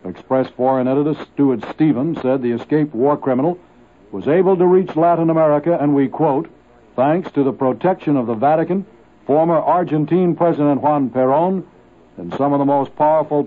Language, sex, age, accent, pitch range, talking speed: English, male, 60-79, American, 130-170 Hz, 165 wpm